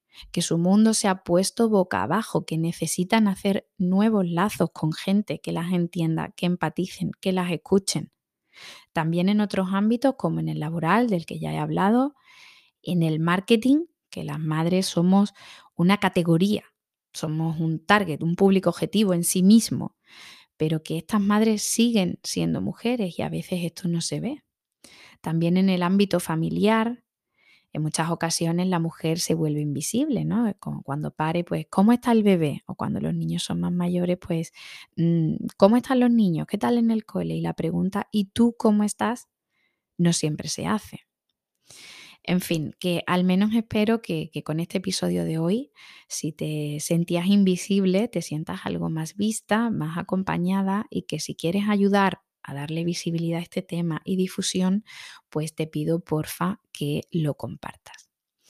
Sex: female